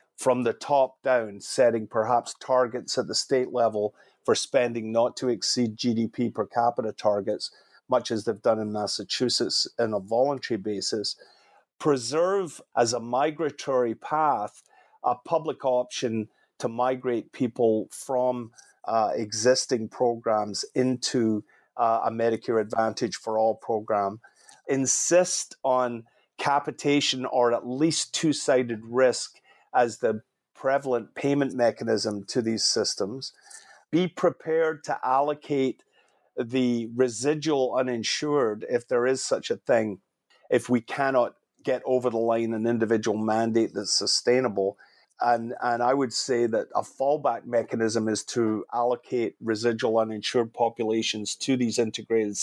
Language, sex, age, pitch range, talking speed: English, male, 40-59, 110-130 Hz, 130 wpm